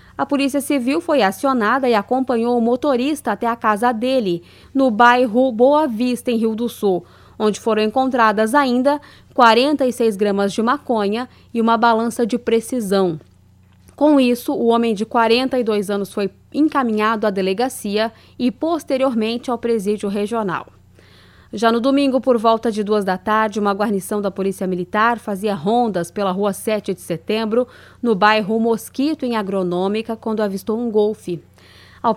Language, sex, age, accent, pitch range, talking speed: Portuguese, female, 20-39, Brazilian, 200-250 Hz, 150 wpm